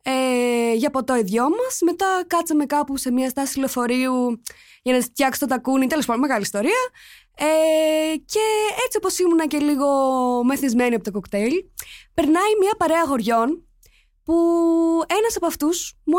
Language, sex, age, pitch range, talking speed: Greek, female, 20-39, 245-355 Hz, 165 wpm